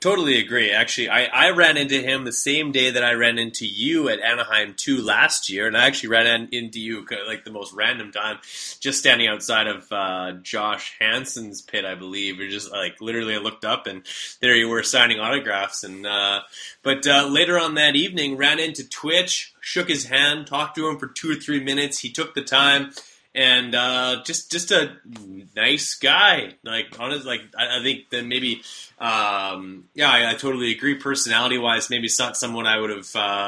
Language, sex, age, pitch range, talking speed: English, male, 20-39, 110-140 Hz, 200 wpm